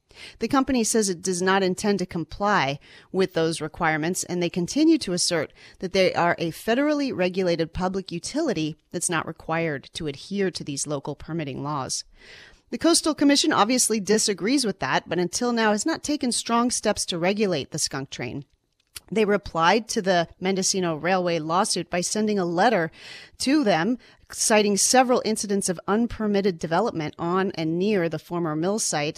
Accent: American